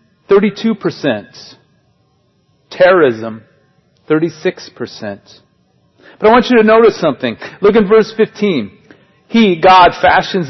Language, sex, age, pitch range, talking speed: English, male, 40-59, 165-225 Hz, 90 wpm